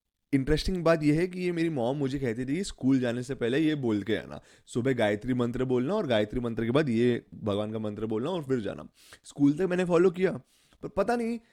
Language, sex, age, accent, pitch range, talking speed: English, male, 20-39, Indian, 115-165 Hz, 185 wpm